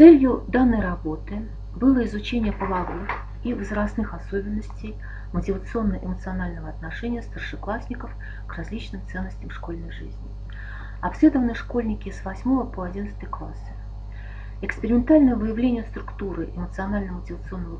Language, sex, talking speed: Russian, female, 95 wpm